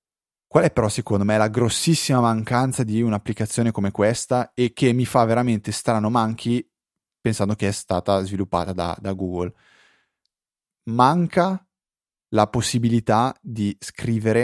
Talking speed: 135 wpm